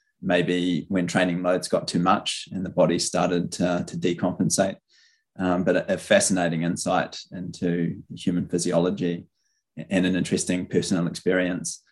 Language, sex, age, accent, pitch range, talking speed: English, male, 20-39, Australian, 90-115 Hz, 140 wpm